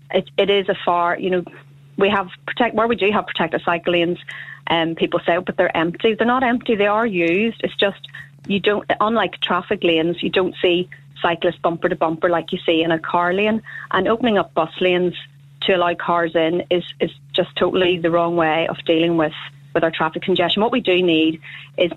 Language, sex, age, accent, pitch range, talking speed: English, female, 30-49, Irish, 165-185 Hz, 215 wpm